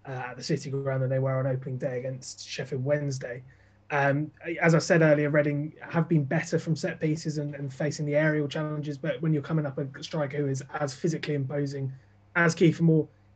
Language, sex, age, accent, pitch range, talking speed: English, male, 20-39, British, 140-165 Hz, 210 wpm